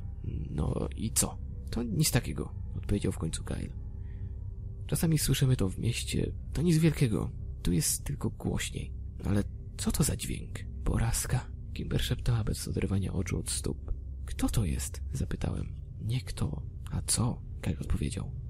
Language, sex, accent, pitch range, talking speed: Polish, male, native, 85-115 Hz, 150 wpm